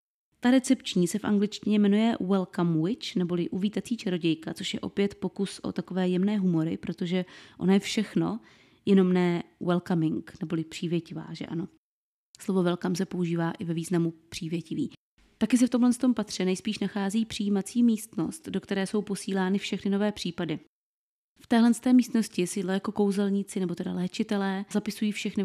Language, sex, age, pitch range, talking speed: Czech, female, 20-39, 180-210 Hz, 155 wpm